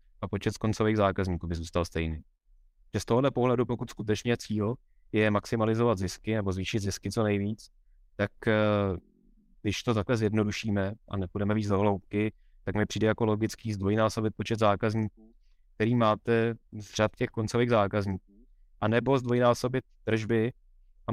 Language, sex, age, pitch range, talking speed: Czech, male, 20-39, 100-120 Hz, 150 wpm